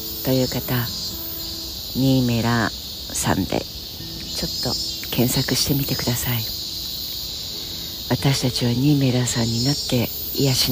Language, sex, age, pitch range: Japanese, female, 50-69, 90-145 Hz